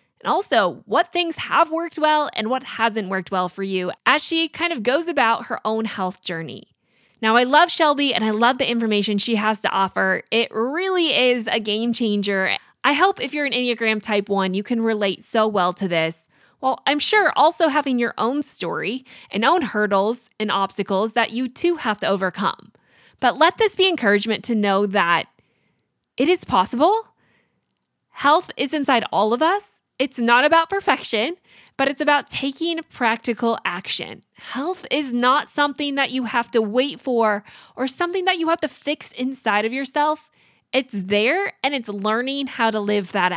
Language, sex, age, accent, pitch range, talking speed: English, female, 20-39, American, 210-295 Hz, 185 wpm